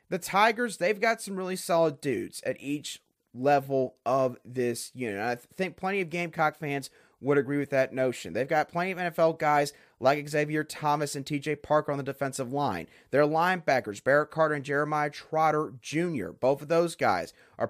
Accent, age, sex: American, 30-49, male